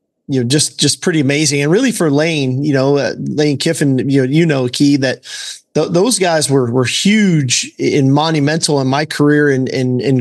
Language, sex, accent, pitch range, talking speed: English, male, American, 135-155 Hz, 200 wpm